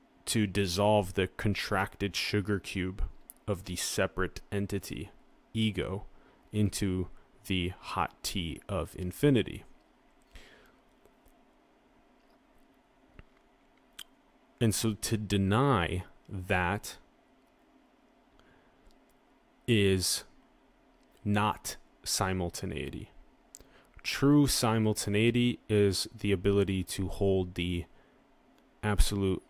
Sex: male